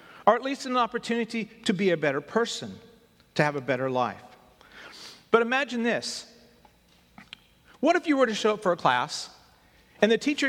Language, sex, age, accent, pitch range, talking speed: English, male, 40-59, American, 155-225 Hz, 175 wpm